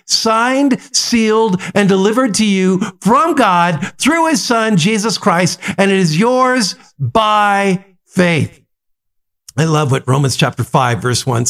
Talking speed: 140 wpm